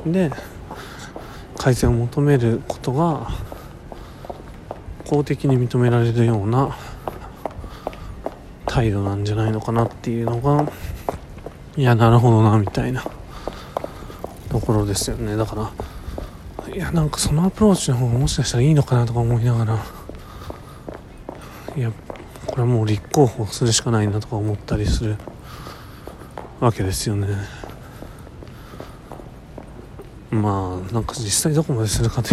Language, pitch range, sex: Japanese, 105-135 Hz, male